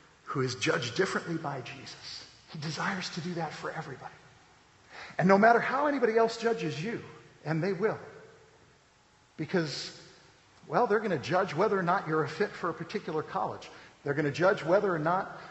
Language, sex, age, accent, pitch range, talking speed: English, male, 50-69, American, 140-195 Hz, 175 wpm